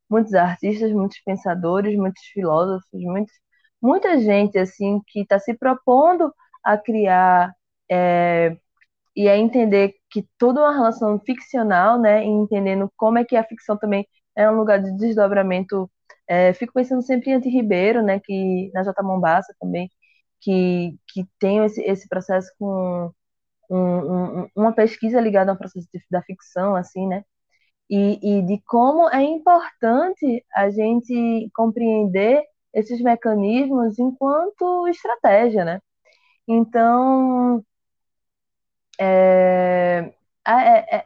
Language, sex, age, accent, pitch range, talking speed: Portuguese, female, 20-39, Brazilian, 185-245 Hz, 125 wpm